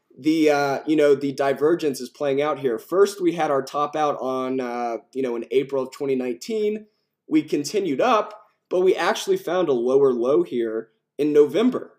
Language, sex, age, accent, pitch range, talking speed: English, male, 20-39, American, 140-210 Hz, 185 wpm